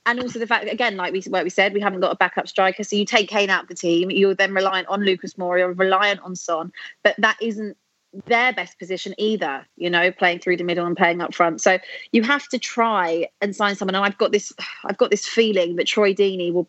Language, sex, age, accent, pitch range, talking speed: English, female, 30-49, British, 185-210 Hz, 260 wpm